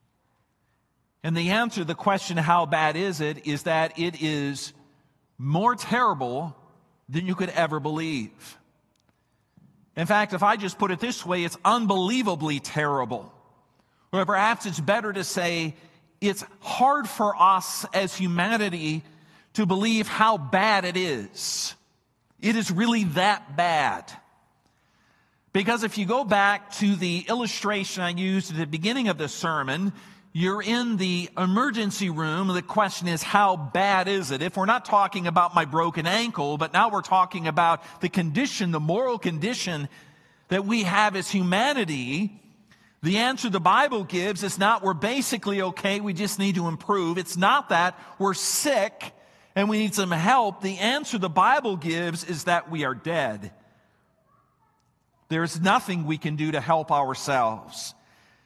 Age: 50-69